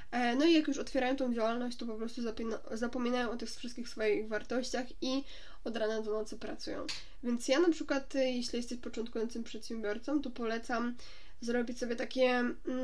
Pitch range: 220-255 Hz